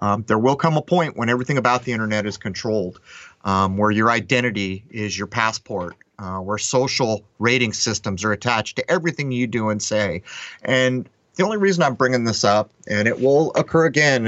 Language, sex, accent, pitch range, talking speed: English, male, American, 105-130 Hz, 195 wpm